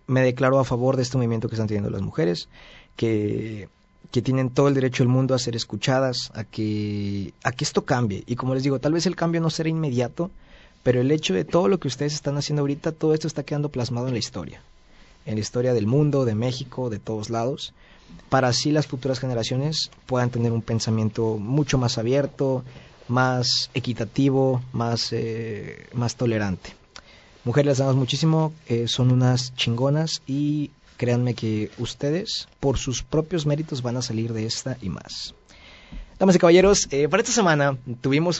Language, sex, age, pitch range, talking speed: Spanish, male, 30-49, 115-145 Hz, 185 wpm